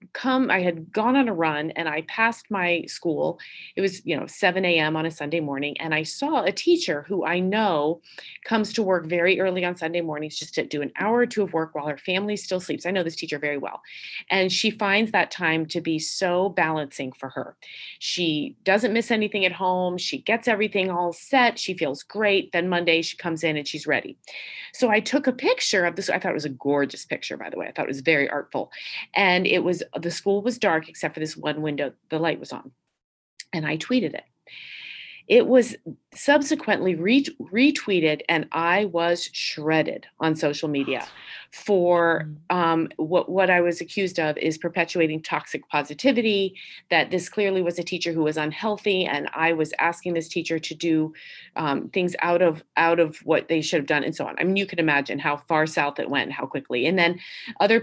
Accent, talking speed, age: American, 210 wpm, 30-49